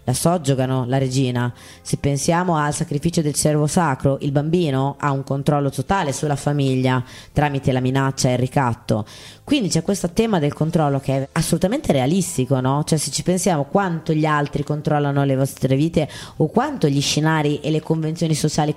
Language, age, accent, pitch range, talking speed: Italian, 20-39, native, 140-180 Hz, 175 wpm